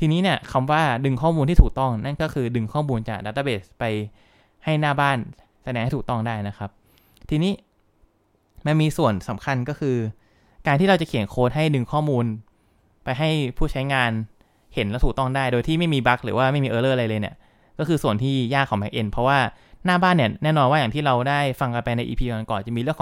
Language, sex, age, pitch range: English, male, 20-39, 110-145 Hz